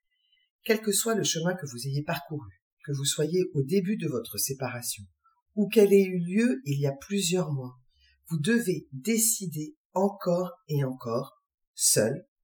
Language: French